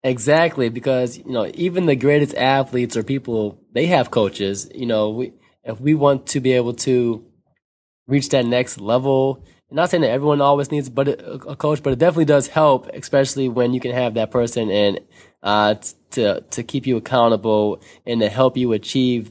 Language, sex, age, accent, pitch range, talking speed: English, male, 20-39, American, 110-135 Hz, 190 wpm